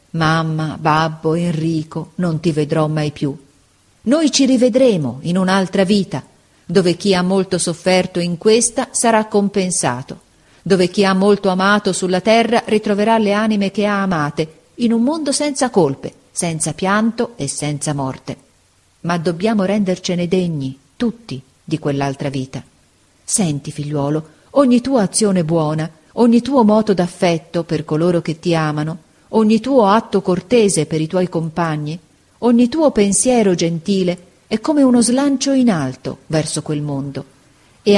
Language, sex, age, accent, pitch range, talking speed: Italian, female, 40-59, native, 155-215 Hz, 145 wpm